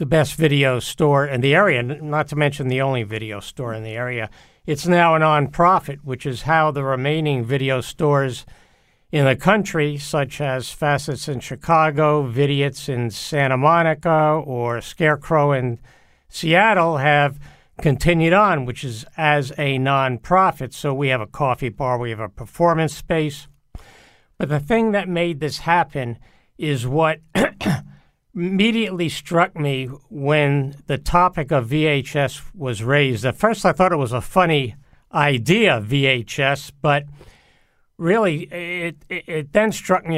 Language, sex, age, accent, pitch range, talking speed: English, male, 60-79, American, 130-165 Hz, 150 wpm